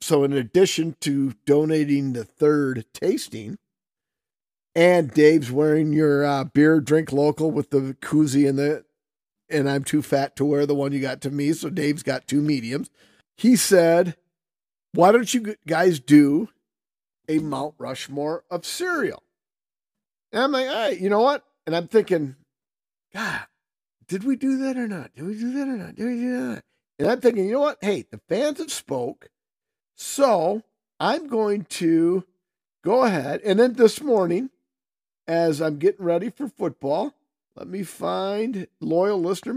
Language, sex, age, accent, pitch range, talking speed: English, male, 50-69, American, 145-205 Hz, 165 wpm